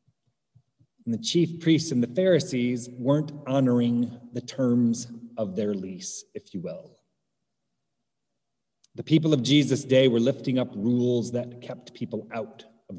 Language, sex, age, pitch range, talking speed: English, male, 30-49, 120-150 Hz, 145 wpm